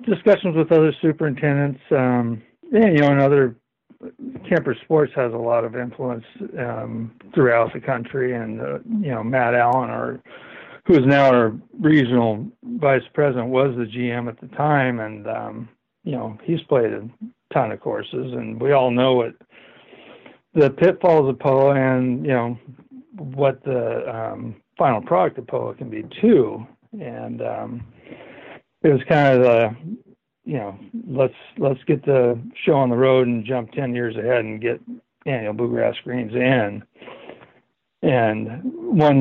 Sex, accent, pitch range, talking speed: male, American, 120-145 Hz, 160 wpm